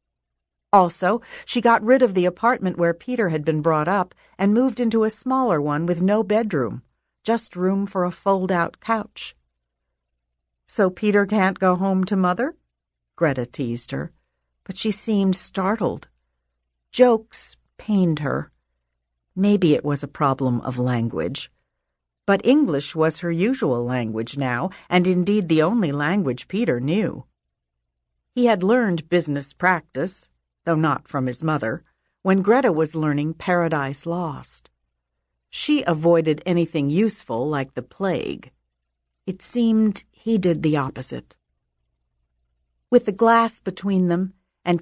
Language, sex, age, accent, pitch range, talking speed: English, female, 50-69, American, 125-200 Hz, 135 wpm